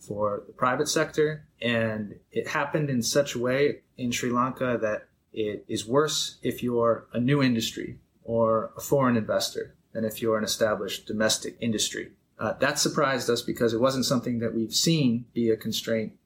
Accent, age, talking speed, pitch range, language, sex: American, 30-49, 175 wpm, 110-130 Hz, English, male